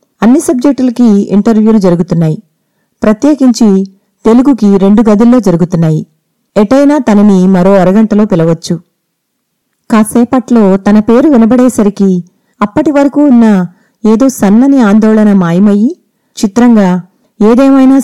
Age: 30-49